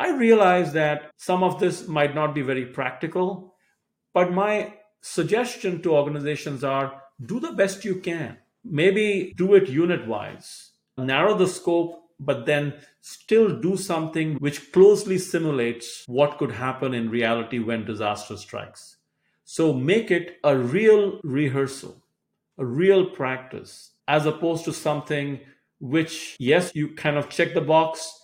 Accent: Indian